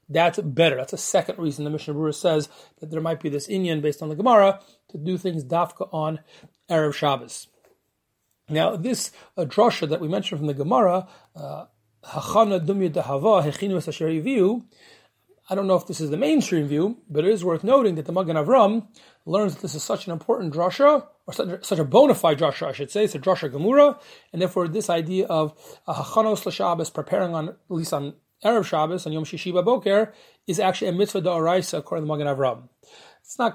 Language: English